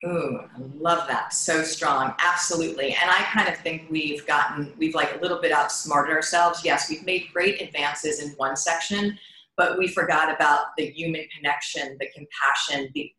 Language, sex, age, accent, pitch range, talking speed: English, female, 40-59, American, 165-200 Hz, 175 wpm